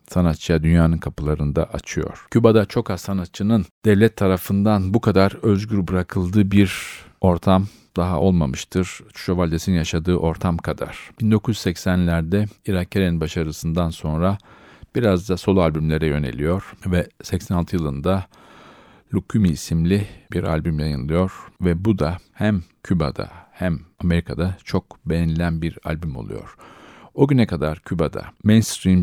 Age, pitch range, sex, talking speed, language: 50-69, 80-95 Hz, male, 120 wpm, Turkish